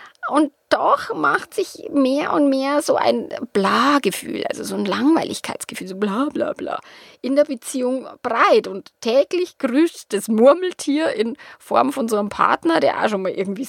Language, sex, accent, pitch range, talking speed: German, female, German, 220-300 Hz, 165 wpm